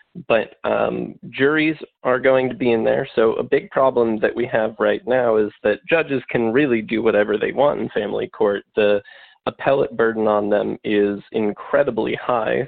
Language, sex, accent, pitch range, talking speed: English, male, American, 110-135 Hz, 180 wpm